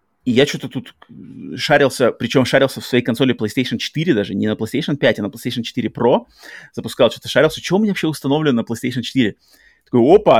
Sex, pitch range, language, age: male, 120-145 Hz, Russian, 30-49